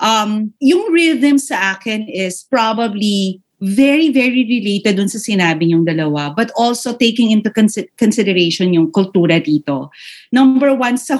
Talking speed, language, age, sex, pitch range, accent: 145 wpm, English, 40-59, female, 175-250 Hz, Filipino